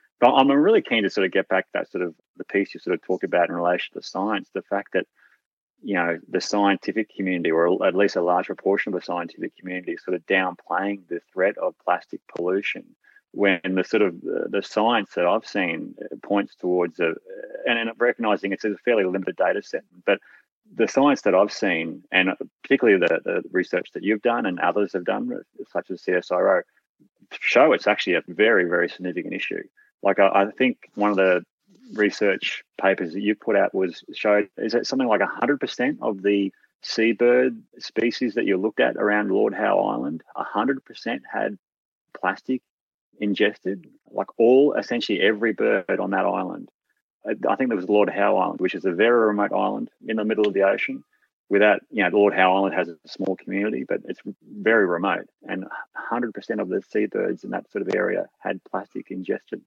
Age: 30-49